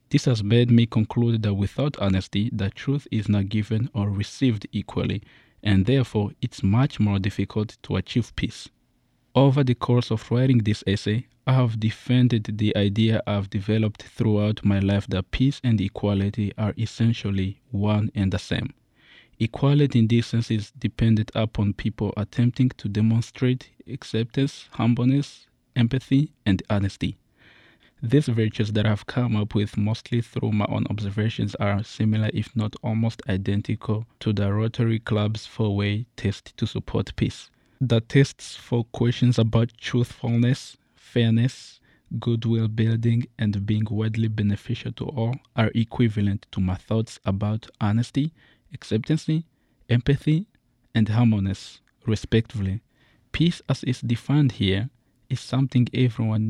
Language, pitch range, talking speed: English, 105-125 Hz, 140 wpm